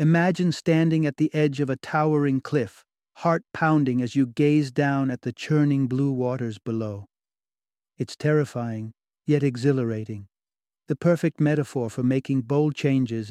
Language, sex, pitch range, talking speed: English, male, 125-150 Hz, 145 wpm